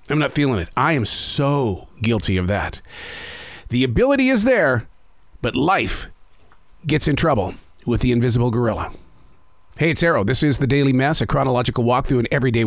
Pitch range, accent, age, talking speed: 125-180 Hz, American, 40-59, 175 wpm